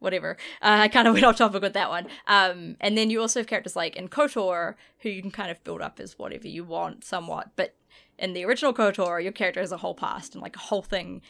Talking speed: 260 wpm